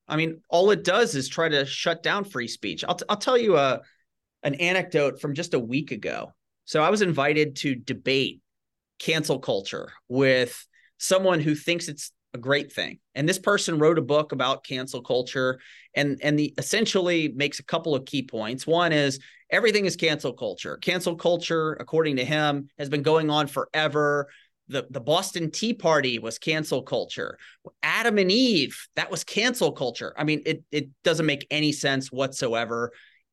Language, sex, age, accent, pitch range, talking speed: English, male, 30-49, American, 135-165 Hz, 180 wpm